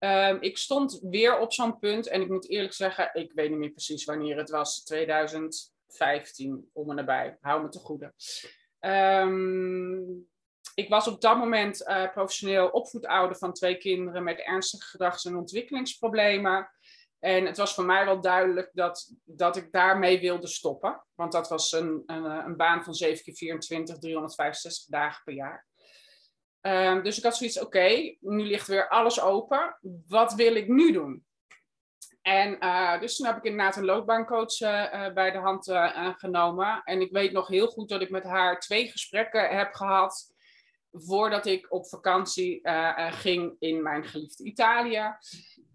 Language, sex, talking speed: Dutch, male, 170 wpm